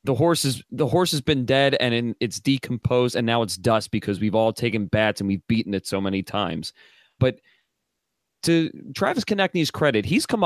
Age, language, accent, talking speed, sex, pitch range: 30-49, English, American, 195 wpm, male, 105-135 Hz